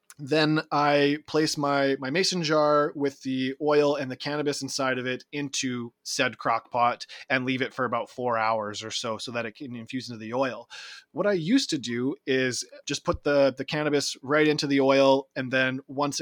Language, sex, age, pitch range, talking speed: English, male, 20-39, 125-150 Hz, 205 wpm